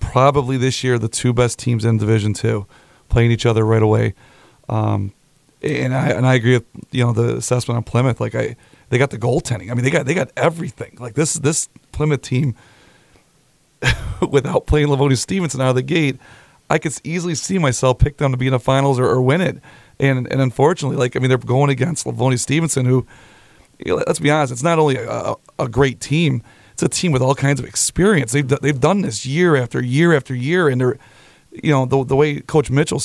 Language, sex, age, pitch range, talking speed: English, male, 40-59, 125-145 Hz, 220 wpm